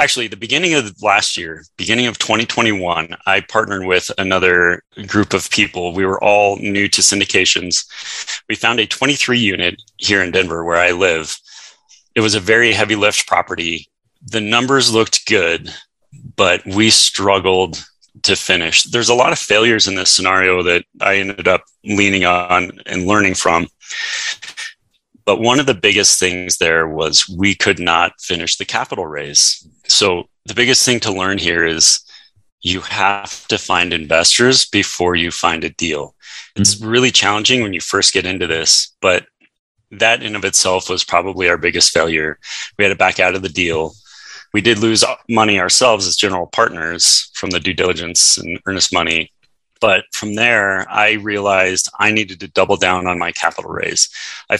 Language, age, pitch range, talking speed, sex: English, 30-49, 90-110 Hz, 170 wpm, male